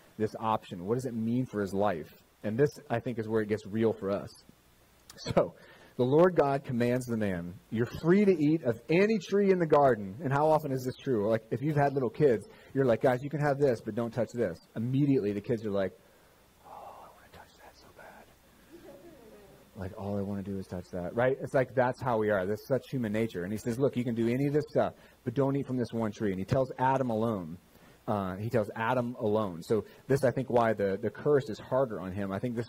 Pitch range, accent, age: 105-135 Hz, American, 30-49